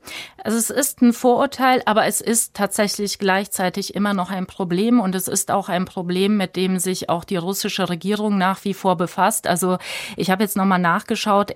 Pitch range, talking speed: 190-230 Hz, 190 wpm